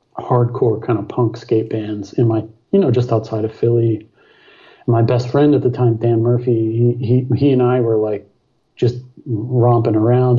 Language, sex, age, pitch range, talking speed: English, male, 40-59, 115-125 Hz, 185 wpm